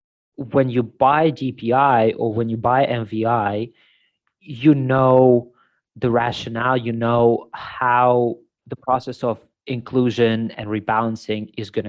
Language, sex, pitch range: English, male, 110-130 Hz